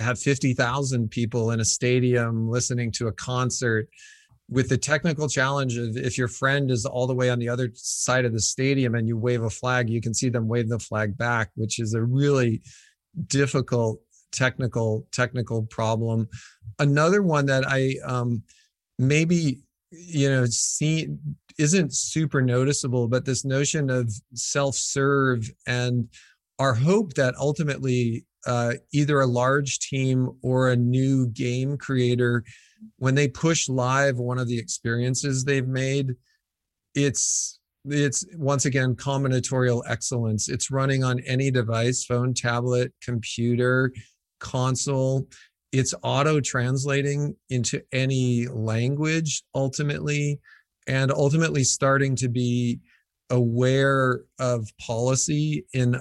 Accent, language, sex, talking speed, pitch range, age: American, English, male, 130 wpm, 120-140 Hz, 40-59